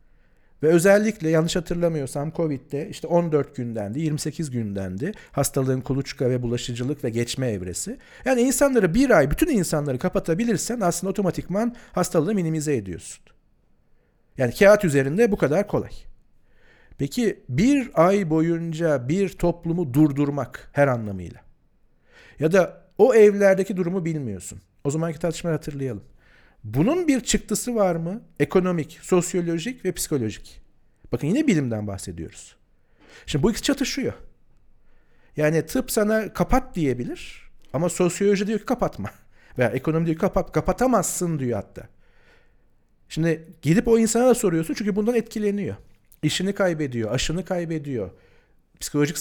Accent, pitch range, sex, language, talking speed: native, 135-205 Hz, male, Turkish, 125 wpm